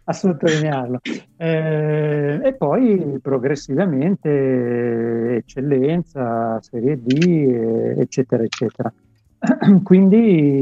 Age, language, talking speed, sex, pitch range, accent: 50-69, Italian, 60 wpm, male, 120-150 Hz, native